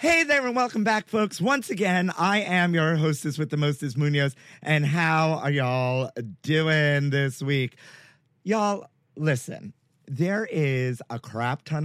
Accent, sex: American, male